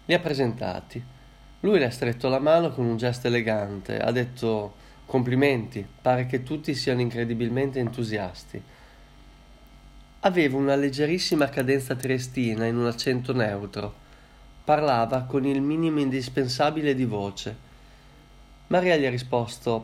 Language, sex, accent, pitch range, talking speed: Italian, male, native, 115-140 Hz, 125 wpm